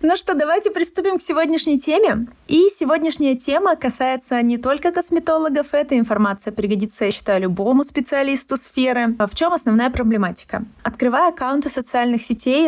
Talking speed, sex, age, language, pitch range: 145 wpm, female, 20-39, Russian, 210-255 Hz